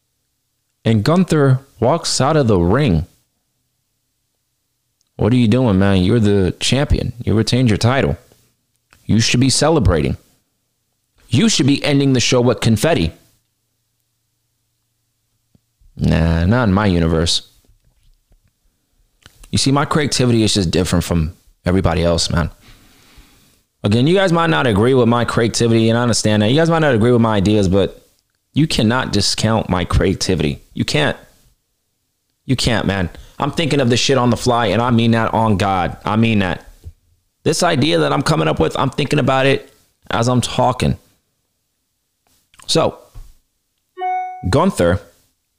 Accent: American